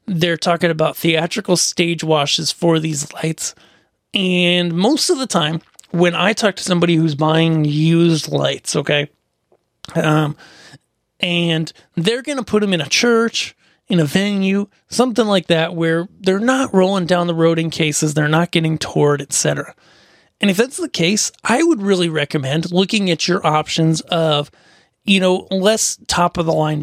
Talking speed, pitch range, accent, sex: 160 wpm, 160-190 Hz, American, male